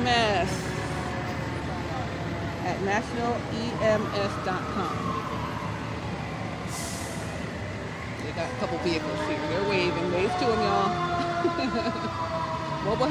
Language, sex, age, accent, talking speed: English, female, 40-59, American, 70 wpm